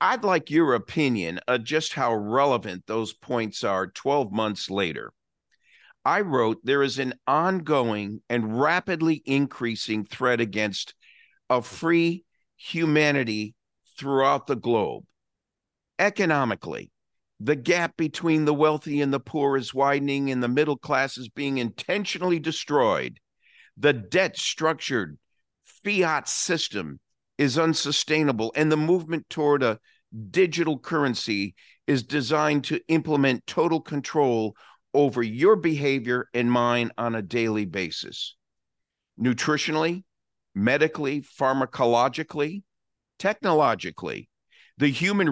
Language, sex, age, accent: English, male, 50-69, American